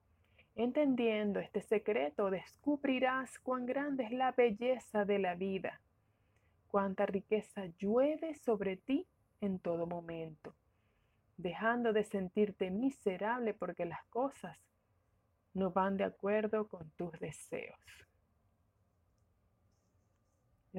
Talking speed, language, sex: 100 wpm, Spanish, female